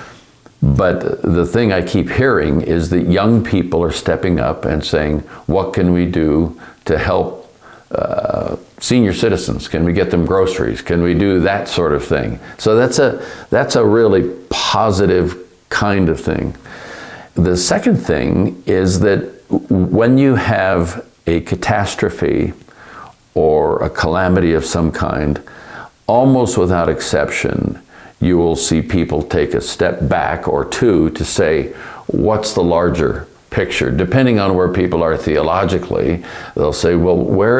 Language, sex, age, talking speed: English, male, 50-69, 145 wpm